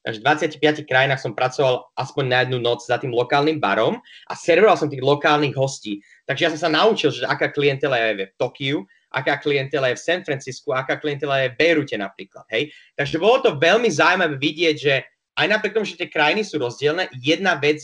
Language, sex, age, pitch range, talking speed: Slovak, male, 20-39, 130-160 Hz, 205 wpm